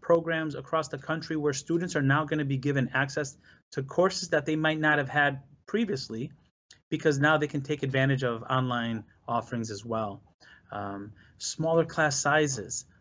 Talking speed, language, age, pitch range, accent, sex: 170 wpm, English, 30-49, 130-155 Hz, American, male